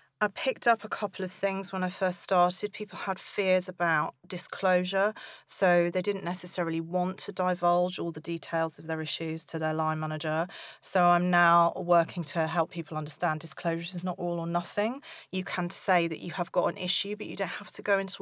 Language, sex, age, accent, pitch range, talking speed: English, female, 40-59, British, 165-195 Hz, 210 wpm